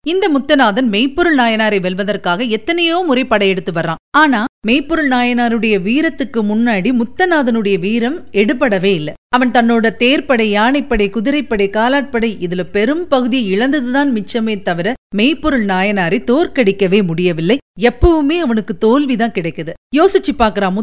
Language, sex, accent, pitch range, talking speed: Tamil, female, native, 205-280 Hz, 85 wpm